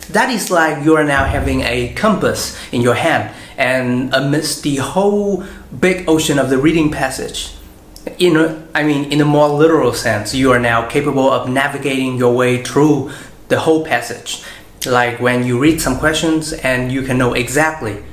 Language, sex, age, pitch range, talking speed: Vietnamese, male, 20-39, 125-160 Hz, 175 wpm